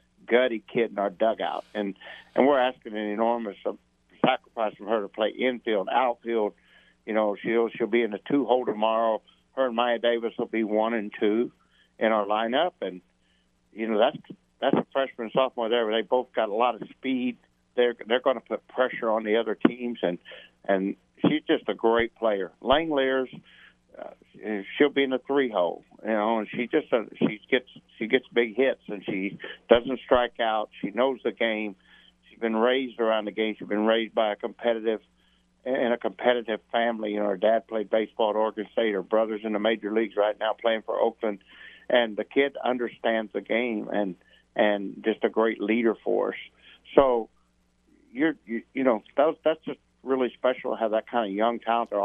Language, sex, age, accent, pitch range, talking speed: English, male, 60-79, American, 105-120 Hz, 200 wpm